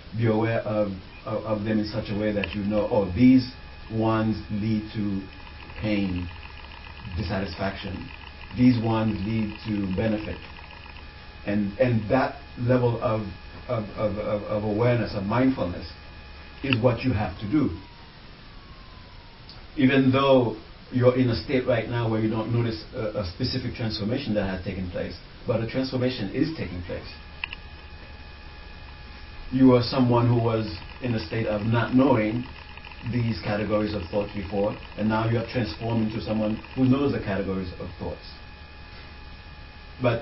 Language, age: English, 60-79